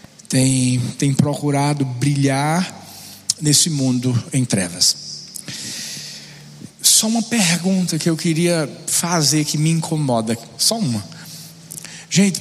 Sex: male